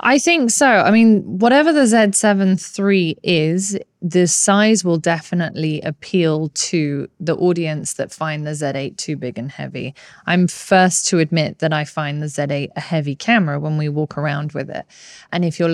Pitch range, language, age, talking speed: 160-200 Hz, English, 20-39, 180 wpm